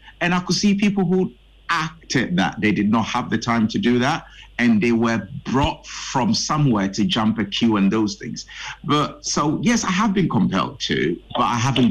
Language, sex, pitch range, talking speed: English, male, 115-185 Hz, 205 wpm